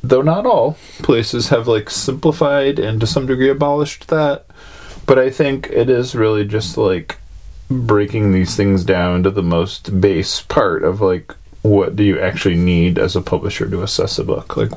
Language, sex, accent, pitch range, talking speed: English, male, American, 90-105 Hz, 185 wpm